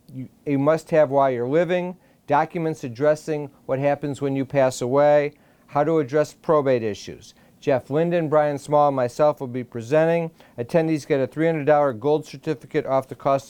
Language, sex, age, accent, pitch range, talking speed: English, male, 50-69, American, 135-160 Hz, 165 wpm